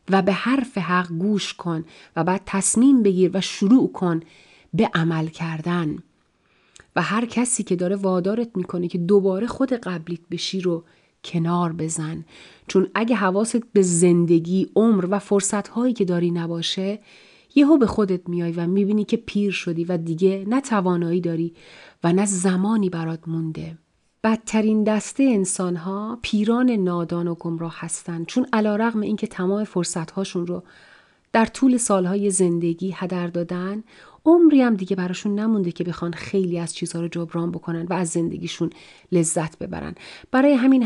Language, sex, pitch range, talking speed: Persian, female, 170-210 Hz, 150 wpm